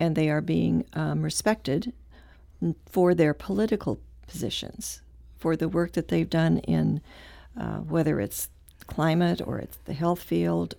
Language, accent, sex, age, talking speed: English, American, female, 60-79, 145 wpm